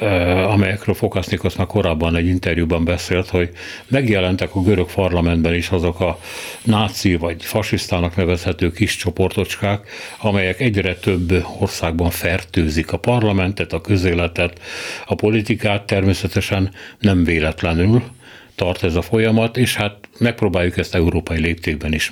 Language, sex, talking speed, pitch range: Hungarian, male, 125 wpm, 85-105 Hz